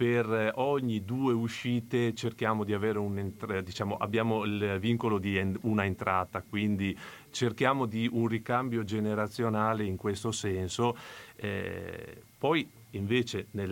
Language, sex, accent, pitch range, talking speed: Italian, male, native, 95-115 Hz, 120 wpm